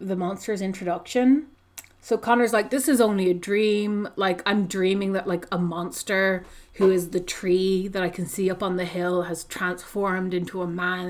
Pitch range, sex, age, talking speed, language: 175-205 Hz, female, 30-49, 190 wpm, English